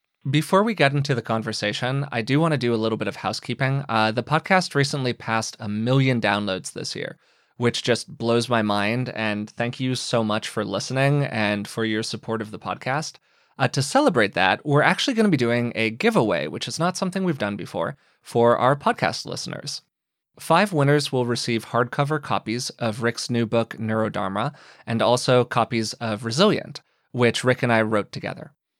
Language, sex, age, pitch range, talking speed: English, male, 20-39, 110-145 Hz, 190 wpm